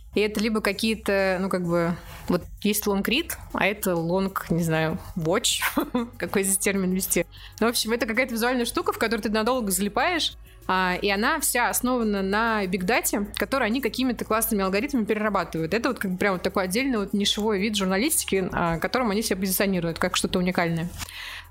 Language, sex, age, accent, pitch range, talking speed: Russian, female, 20-39, native, 185-225 Hz, 175 wpm